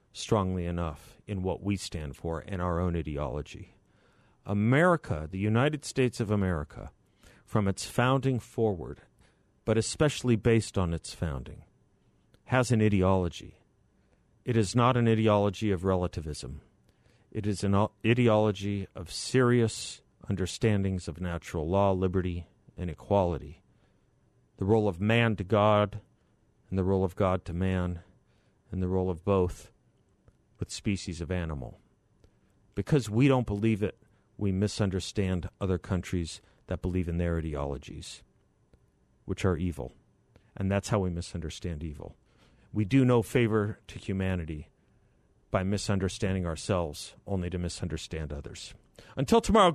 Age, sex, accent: 50-69, male, American